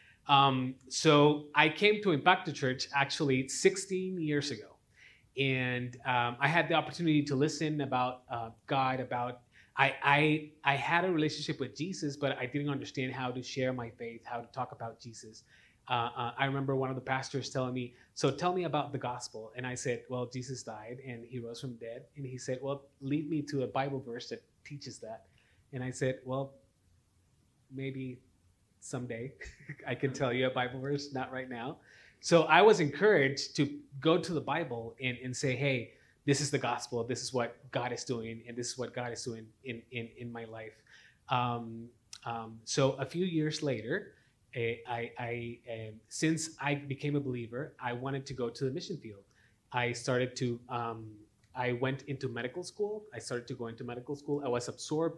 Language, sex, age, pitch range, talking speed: English, male, 30-49, 120-140 Hz, 195 wpm